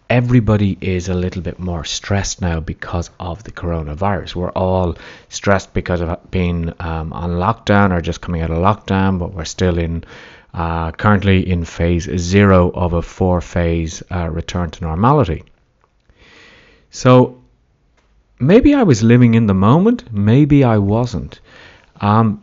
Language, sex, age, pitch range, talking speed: English, male, 30-49, 85-105 Hz, 145 wpm